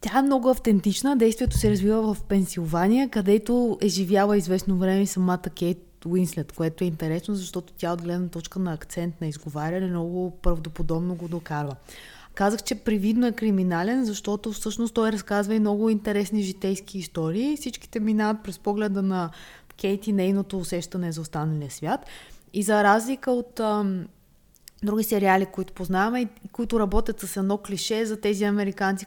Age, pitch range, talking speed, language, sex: 20-39, 180-220 Hz, 160 wpm, Bulgarian, female